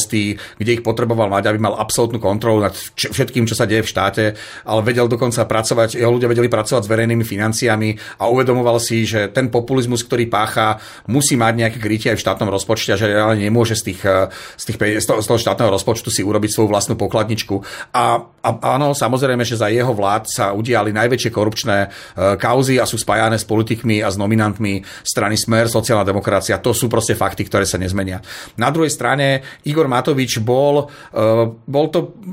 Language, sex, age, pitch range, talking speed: Slovak, male, 40-59, 110-135 Hz, 190 wpm